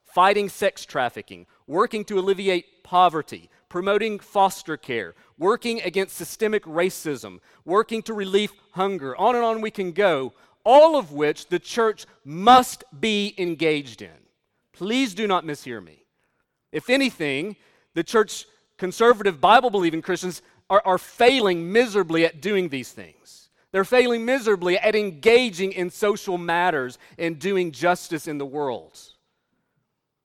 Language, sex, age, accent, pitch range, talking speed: English, male, 40-59, American, 170-225 Hz, 135 wpm